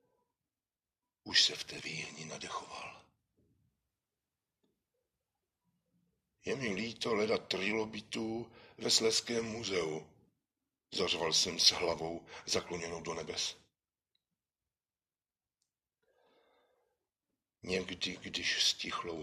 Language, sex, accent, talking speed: Czech, male, native, 80 wpm